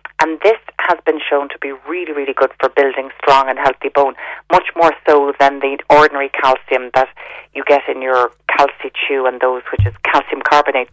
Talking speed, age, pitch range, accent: 200 wpm, 40-59, 140-180 Hz, Irish